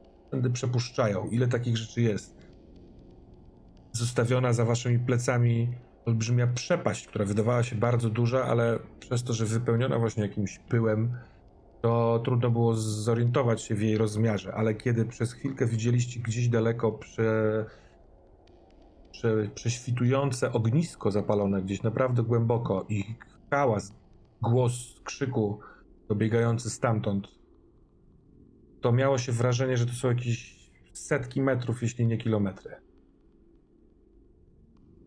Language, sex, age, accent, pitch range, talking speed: Polish, male, 40-59, native, 105-120 Hz, 115 wpm